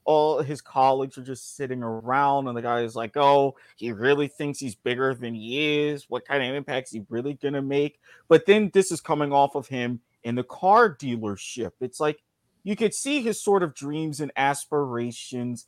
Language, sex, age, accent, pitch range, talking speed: English, male, 30-49, American, 130-190 Hz, 205 wpm